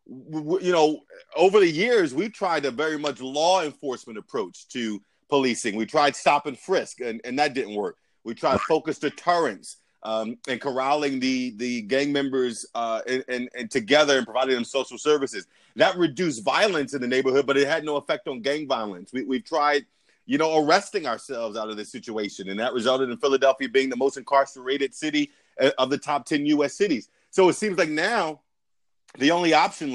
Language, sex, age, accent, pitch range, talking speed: English, male, 30-49, American, 135-180 Hz, 190 wpm